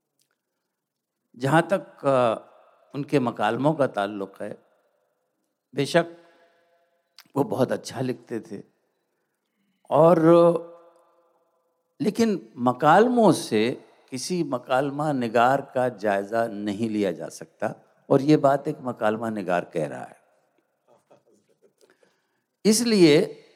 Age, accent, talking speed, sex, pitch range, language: 60-79, native, 90 wpm, male, 120-175 Hz, Hindi